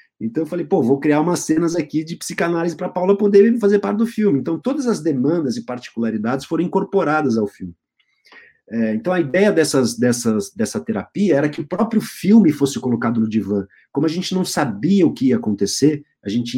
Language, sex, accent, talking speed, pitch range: Portuguese, male, Brazilian, 190 wpm, 130-190 Hz